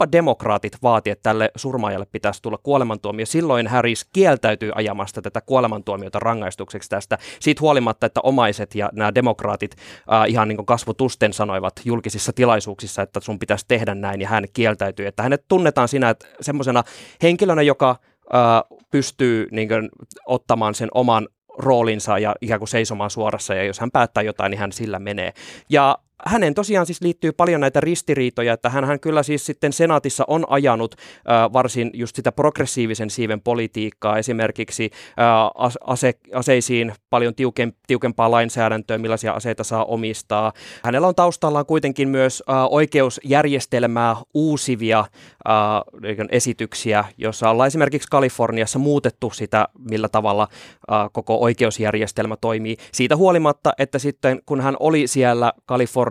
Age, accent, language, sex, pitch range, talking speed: 20-39, native, Finnish, male, 110-135 Hz, 145 wpm